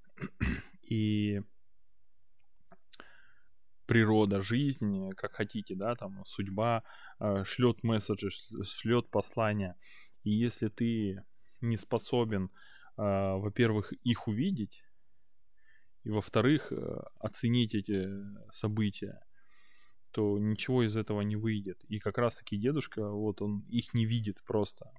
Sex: male